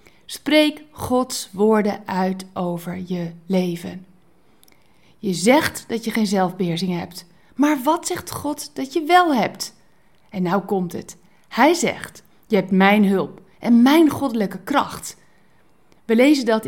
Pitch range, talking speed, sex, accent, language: 190-275 Hz, 140 wpm, female, Dutch, Dutch